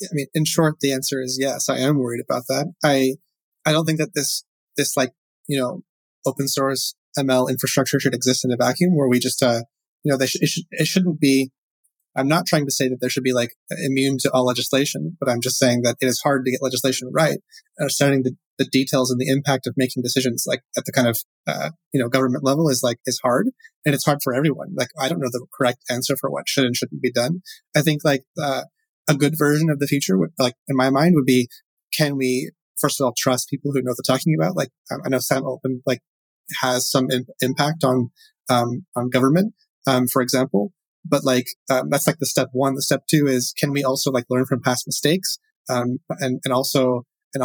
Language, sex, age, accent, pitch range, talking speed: English, male, 30-49, American, 130-150 Hz, 235 wpm